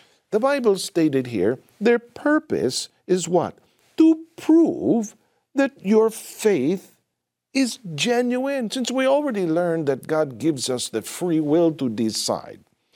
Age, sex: 50-69, male